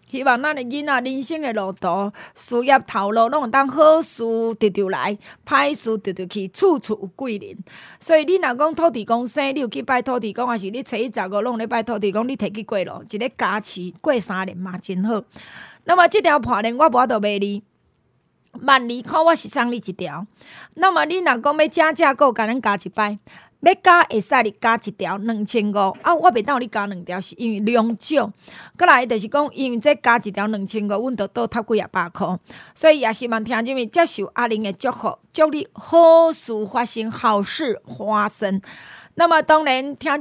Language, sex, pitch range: Chinese, female, 210-285 Hz